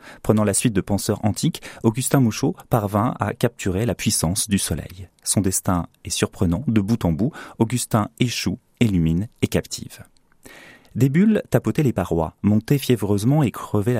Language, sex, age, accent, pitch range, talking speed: French, male, 30-49, French, 95-125 Hz, 160 wpm